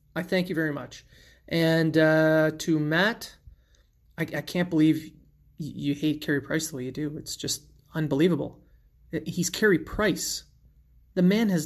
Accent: American